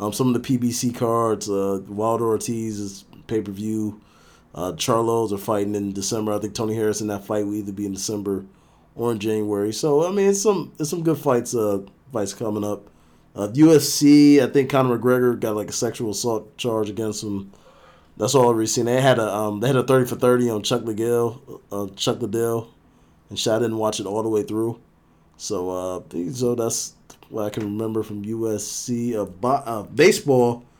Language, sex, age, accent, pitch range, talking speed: English, male, 20-39, American, 105-125 Hz, 205 wpm